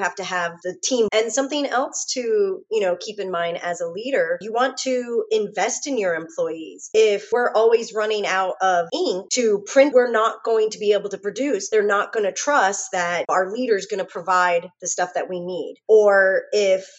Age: 30-49